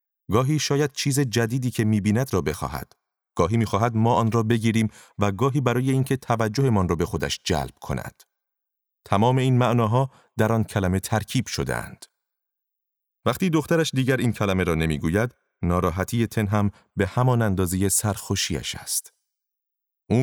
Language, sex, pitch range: Persian, male, 95-130 Hz